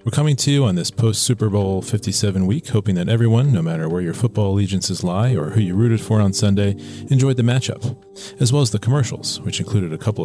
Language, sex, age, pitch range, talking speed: English, male, 40-59, 95-120 Hz, 230 wpm